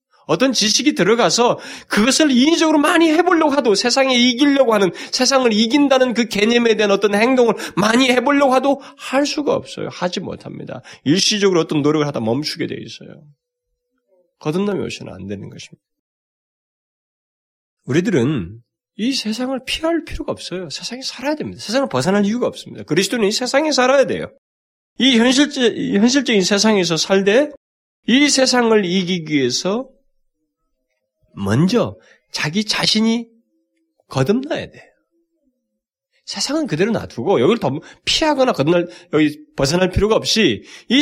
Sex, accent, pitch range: male, native, 185-270 Hz